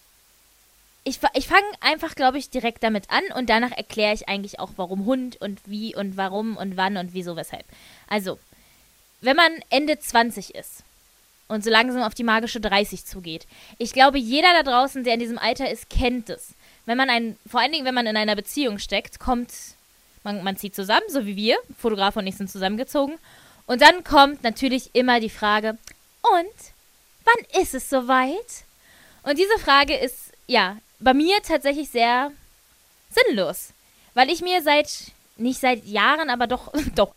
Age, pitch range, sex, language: 20-39, 225-290 Hz, female, German